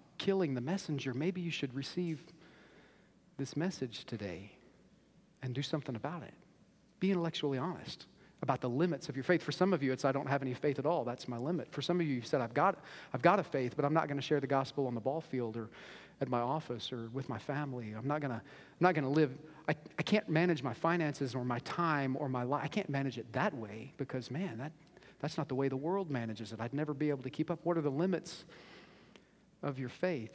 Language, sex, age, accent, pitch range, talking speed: English, male, 40-59, American, 140-195 Hz, 235 wpm